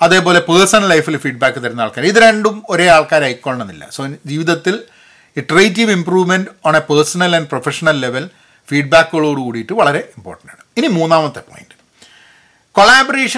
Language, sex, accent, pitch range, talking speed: Malayalam, male, native, 140-210 Hz, 135 wpm